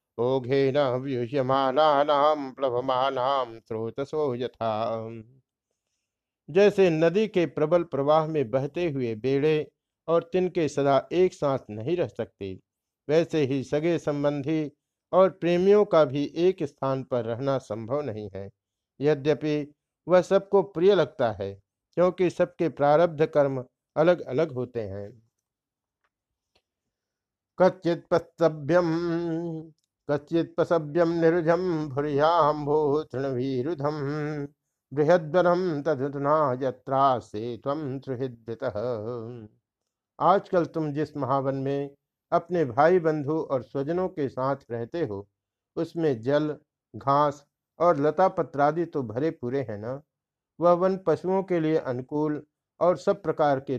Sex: male